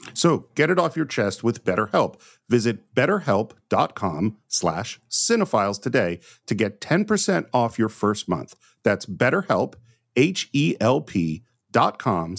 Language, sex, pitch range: English, male, 105-140 Hz